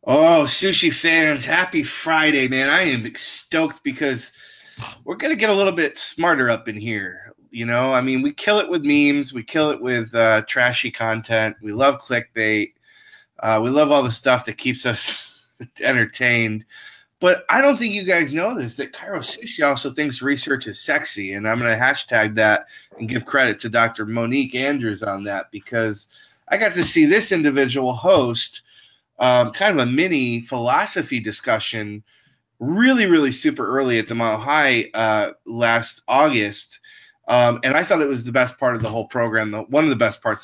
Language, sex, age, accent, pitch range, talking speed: English, male, 20-39, American, 115-150 Hz, 185 wpm